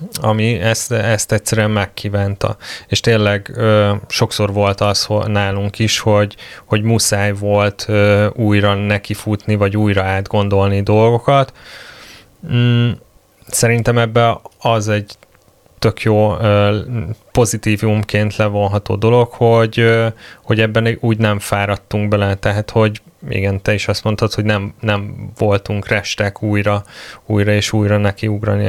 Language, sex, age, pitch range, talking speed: Hungarian, male, 20-39, 100-110 Hz, 125 wpm